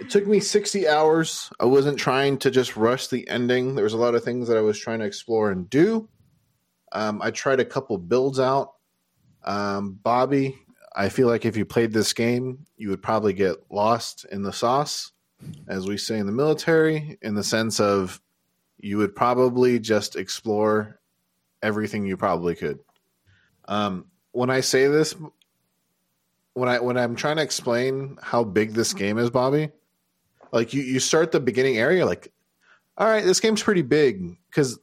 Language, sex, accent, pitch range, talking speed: English, male, American, 105-135 Hz, 175 wpm